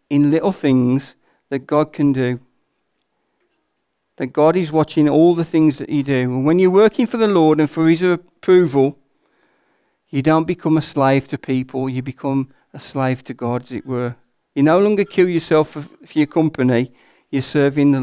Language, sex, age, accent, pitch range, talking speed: English, male, 50-69, British, 130-155 Hz, 185 wpm